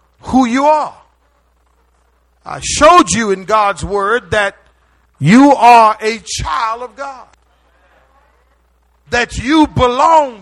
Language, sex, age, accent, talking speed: English, male, 50-69, American, 110 wpm